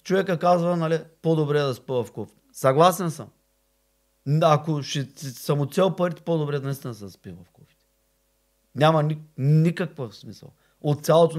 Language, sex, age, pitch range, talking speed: Bulgarian, male, 30-49, 125-160 Hz, 190 wpm